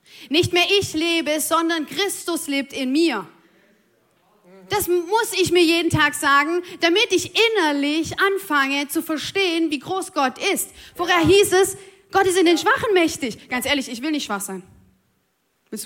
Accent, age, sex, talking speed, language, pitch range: German, 20-39, female, 165 wpm, German, 230-325 Hz